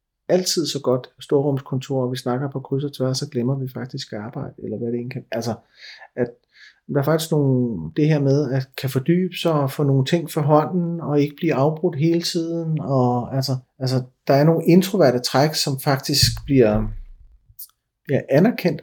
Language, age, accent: Danish, 30-49, native